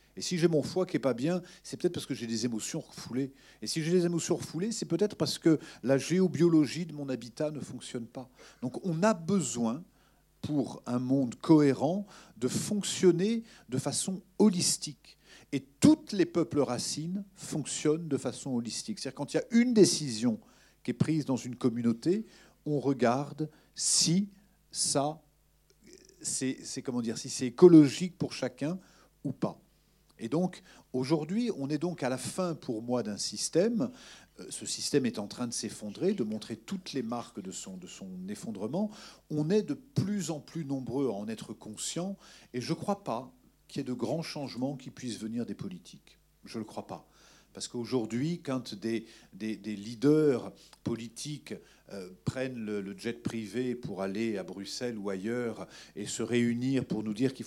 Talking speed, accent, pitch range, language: 180 wpm, French, 120-175 Hz, French